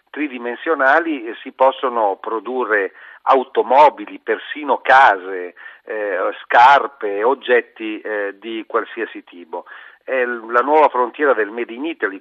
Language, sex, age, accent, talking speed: Italian, male, 40-59, native, 115 wpm